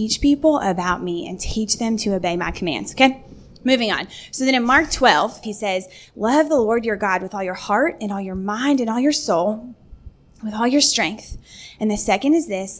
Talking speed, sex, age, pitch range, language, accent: 220 wpm, female, 20-39, 200-255 Hz, English, American